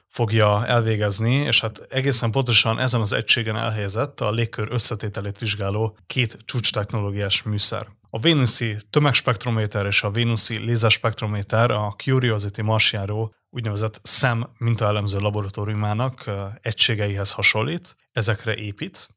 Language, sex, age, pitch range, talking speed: Hungarian, male, 30-49, 105-115 Hz, 110 wpm